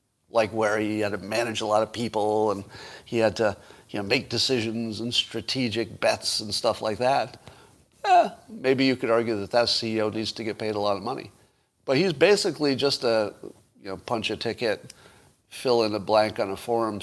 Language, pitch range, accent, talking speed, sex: English, 110-140 Hz, American, 175 wpm, male